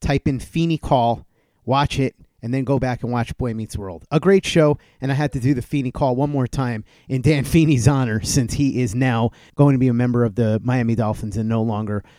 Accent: American